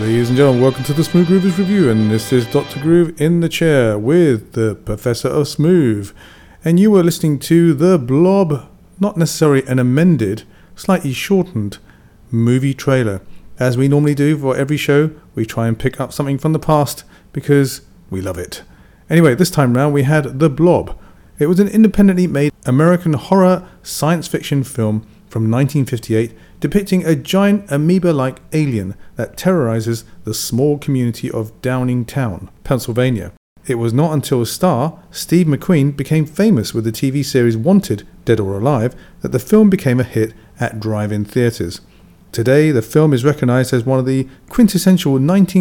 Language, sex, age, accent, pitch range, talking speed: English, male, 40-59, British, 120-165 Hz, 170 wpm